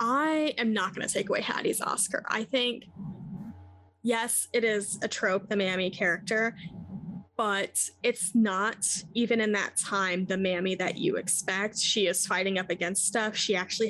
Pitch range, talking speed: 185-225 Hz, 165 wpm